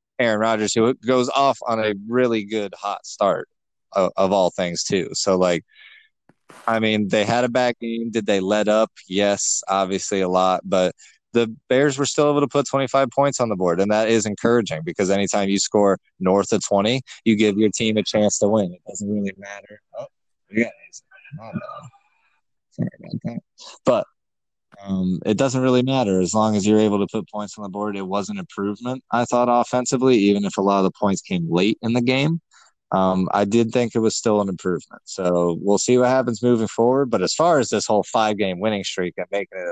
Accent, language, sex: American, English, male